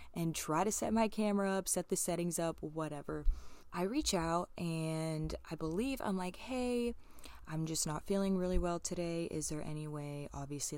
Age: 20-39